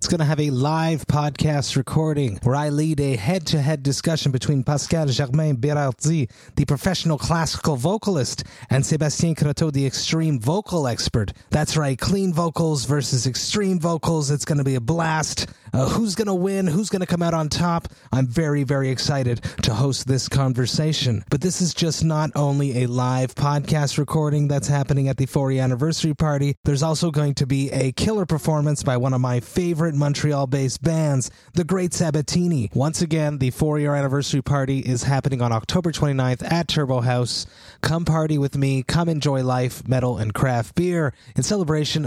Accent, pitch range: American, 130-155 Hz